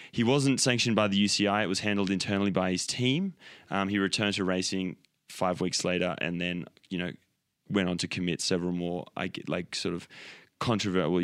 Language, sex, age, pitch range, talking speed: English, male, 20-39, 90-105 Hz, 185 wpm